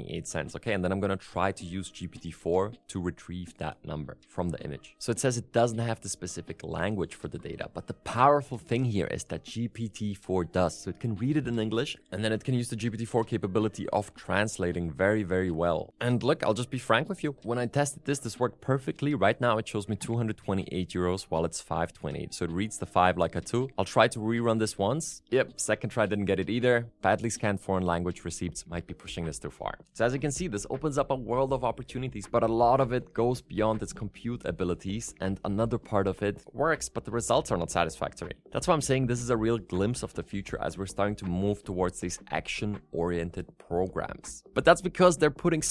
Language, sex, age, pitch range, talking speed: German, male, 20-39, 95-125 Hz, 230 wpm